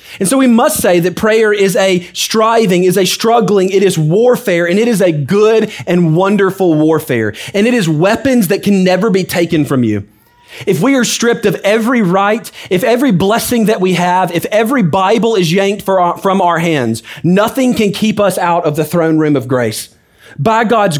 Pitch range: 155-200 Hz